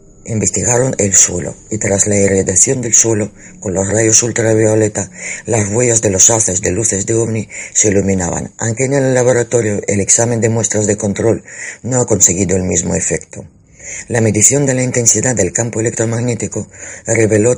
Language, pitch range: Spanish, 100-115 Hz